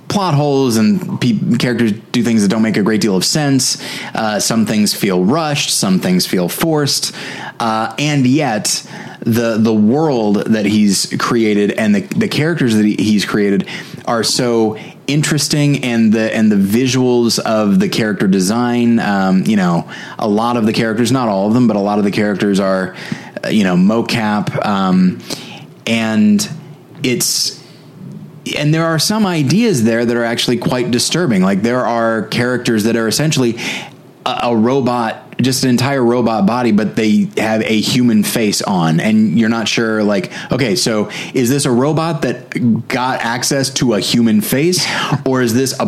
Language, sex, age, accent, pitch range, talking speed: English, male, 30-49, American, 115-165 Hz, 175 wpm